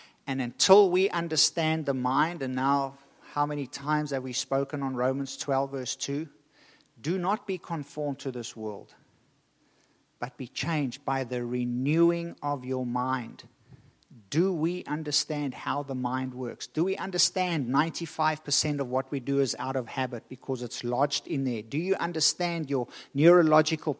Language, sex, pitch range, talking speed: English, male, 135-170 Hz, 160 wpm